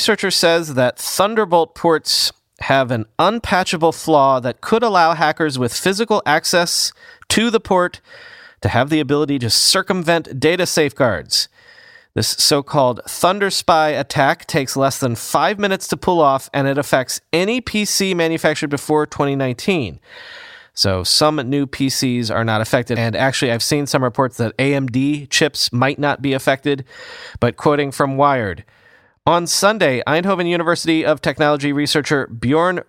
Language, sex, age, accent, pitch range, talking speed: English, male, 30-49, American, 135-175 Hz, 145 wpm